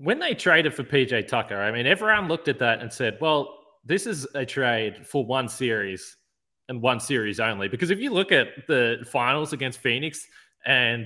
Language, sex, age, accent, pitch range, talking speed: English, male, 20-39, Australian, 115-150 Hz, 195 wpm